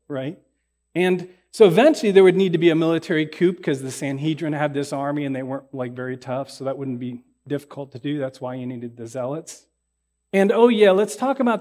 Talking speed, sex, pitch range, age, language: 220 wpm, male, 135-185 Hz, 40-59, English